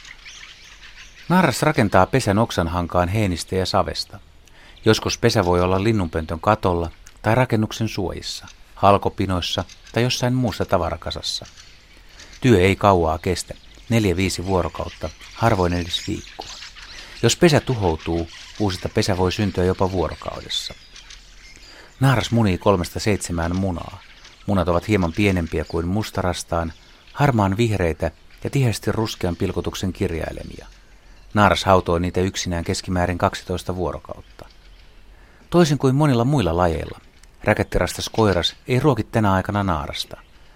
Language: Finnish